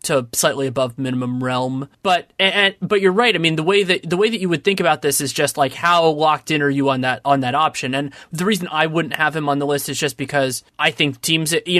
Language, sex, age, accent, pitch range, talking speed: English, male, 20-39, American, 140-170 Hz, 270 wpm